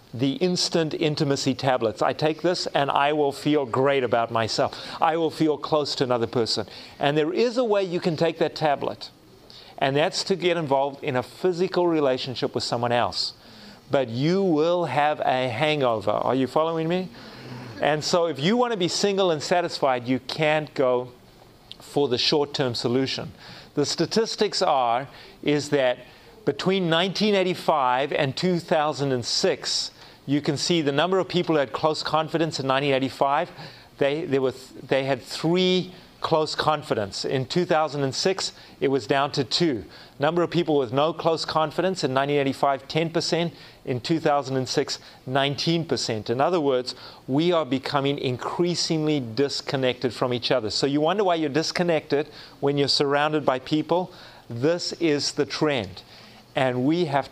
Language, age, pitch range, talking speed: English, 40-59, 130-165 Hz, 155 wpm